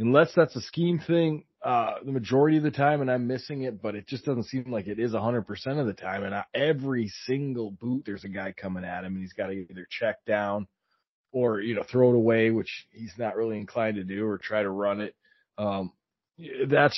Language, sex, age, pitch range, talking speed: English, male, 30-49, 100-130 Hz, 230 wpm